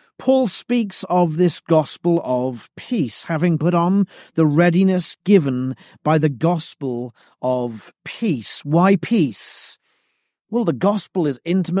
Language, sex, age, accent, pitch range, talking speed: English, male, 40-59, British, 165-210 Hz, 120 wpm